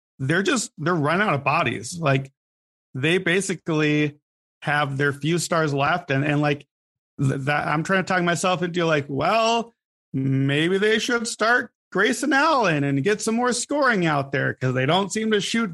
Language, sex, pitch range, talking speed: English, male, 140-185 Hz, 180 wpm